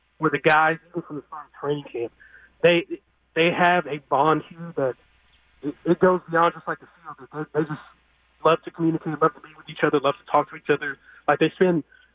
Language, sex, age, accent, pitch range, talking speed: English, male, 30-49, American, 140-165 Hz, 225 wpm